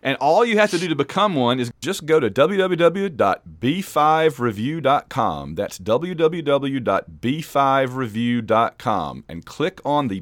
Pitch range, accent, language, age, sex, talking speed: 125-175 Hz, American, English, 40-59, male, 115 wpm